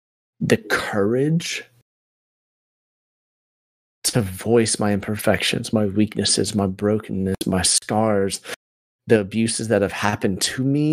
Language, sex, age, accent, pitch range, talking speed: English, male, 30-49, American, 95-115 Hz, 105 wpm